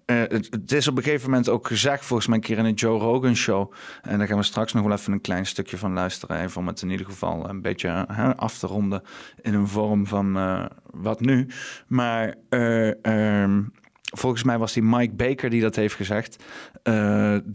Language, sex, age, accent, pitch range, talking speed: Dutch, male, 40-59, Dutch, 110-130 Hz, 210 wpm